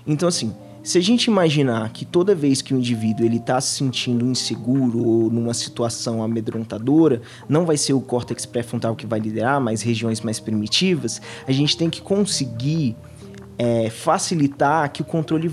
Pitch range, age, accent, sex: 125-170 Hz, 20-39, Brazilian, male